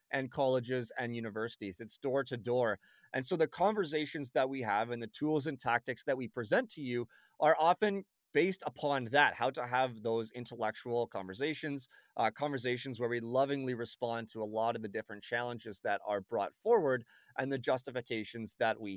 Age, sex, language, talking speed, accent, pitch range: 30-49, male, English, 185 wpm, American, 120-150 Hz